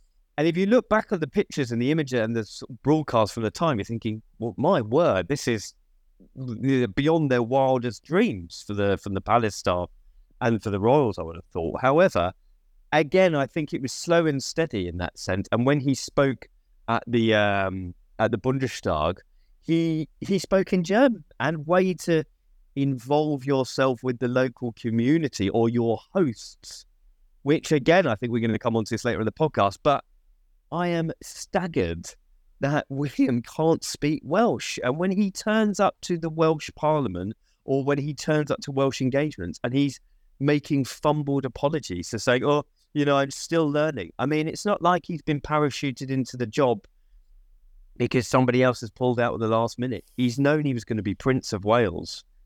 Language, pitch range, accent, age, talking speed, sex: English, 110-150 Hz, British, 30-49, 190 wpm, male